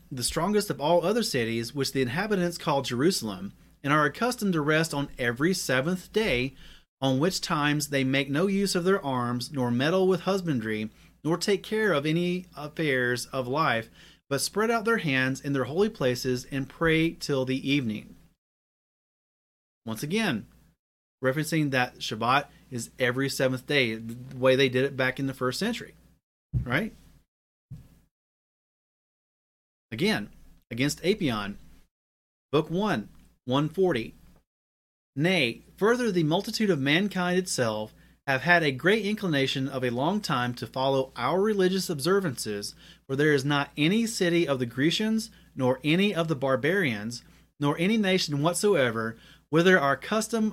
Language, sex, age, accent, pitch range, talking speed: English, male, 30-49, American, 125-180 Hz, 145 wpm